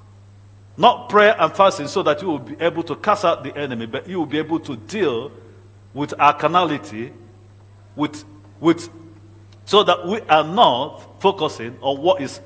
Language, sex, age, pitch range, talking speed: English, male, 50-69, 110-175 Hz, 175 wpm